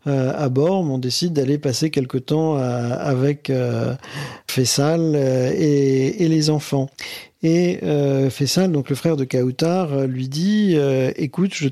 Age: 50-69